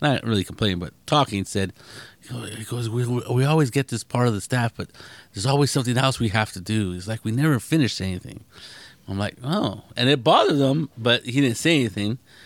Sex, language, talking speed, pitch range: male, English, 215 wpm, 105-130 Hz